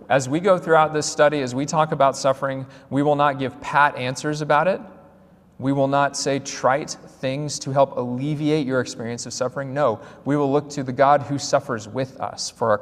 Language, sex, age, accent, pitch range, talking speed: English, male, 30-49, American, 125-155 Hz, 210 wpm